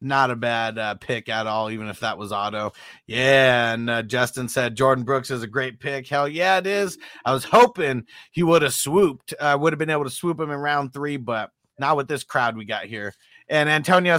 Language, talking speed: English, 235 wpm